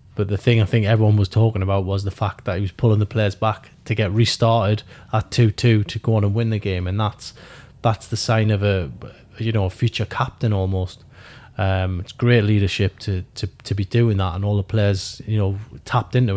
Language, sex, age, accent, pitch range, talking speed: English, male, 20-39, British, 100-120 Hz, 225 wpm